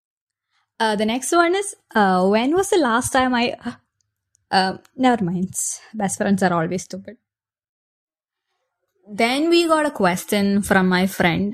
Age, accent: 20-39, Indian